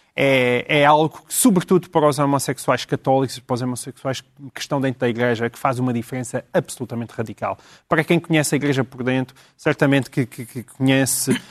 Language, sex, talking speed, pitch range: Portuguese, male, 180 wpm, 130-180 Hz